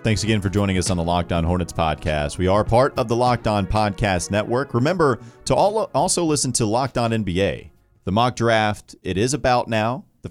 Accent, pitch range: American, 90-115 Hz